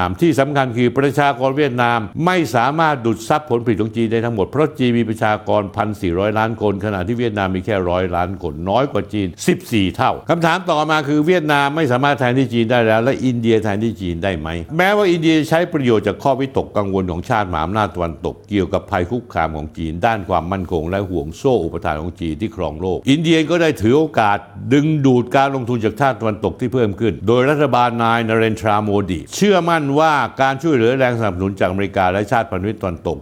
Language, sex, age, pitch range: Thai, male, 60-79, 100-135 Hz